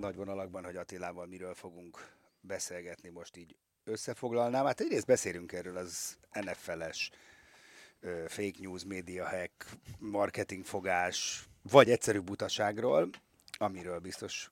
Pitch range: 95-115 Hz